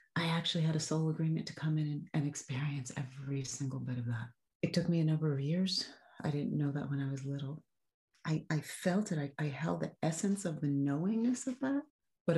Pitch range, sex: 135-155 Hz, female